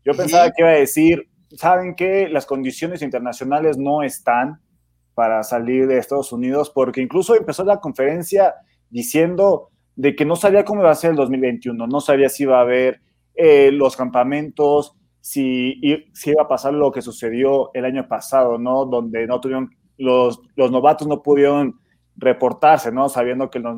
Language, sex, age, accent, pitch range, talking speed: Spanish, male, 30-49, Mexican, 125-155 Hz, 175 wpm